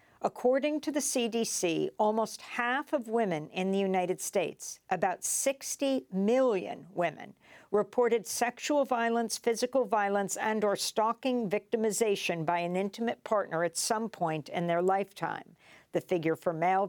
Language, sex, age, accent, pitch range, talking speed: English, female, 60-79, American, 165-220 Hz, 130 wpm